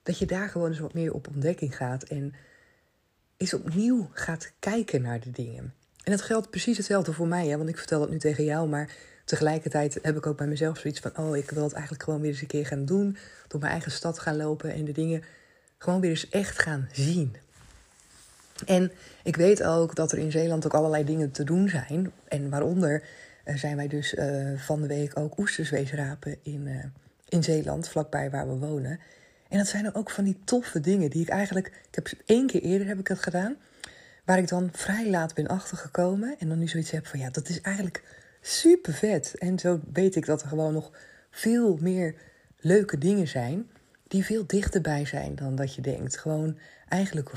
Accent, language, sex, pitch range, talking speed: Dutch, Dutch, female, 145-180 Hz, 210 wpm